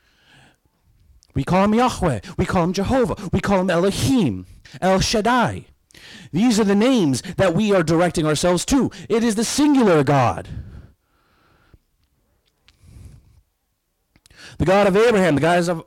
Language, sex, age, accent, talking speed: English, male, 40-59, American, 130 wpm